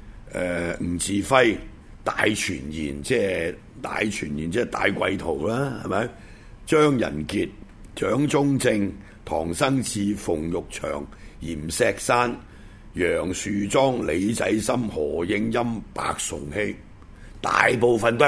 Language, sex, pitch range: Chinese, male, 100-140 Hz